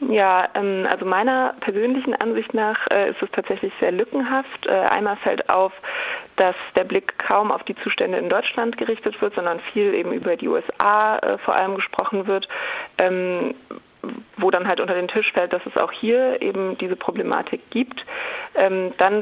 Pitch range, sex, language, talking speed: 180-245 Hz, female, German, 160 wpm